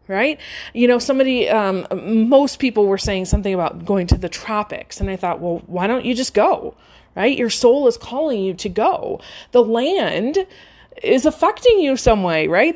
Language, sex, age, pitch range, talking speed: English, female, 30-49, 210-285 Hz, 190 wpm